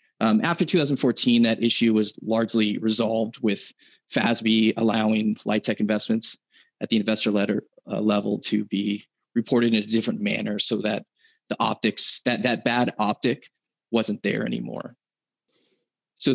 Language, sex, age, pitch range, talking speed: English, male, 30-49, 110-145 Hz, 135 wpm